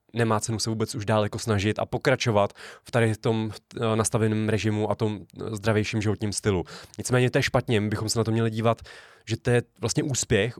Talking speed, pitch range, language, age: 190 wpm, 105-120 Hz, Czech, 20-39